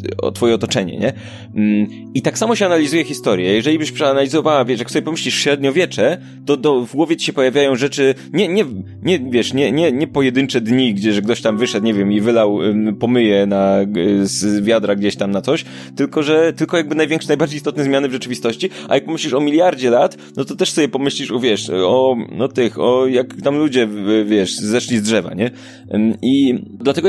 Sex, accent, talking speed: male, native, 195 wpm